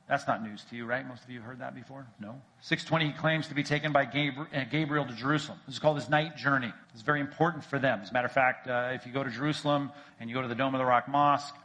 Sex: male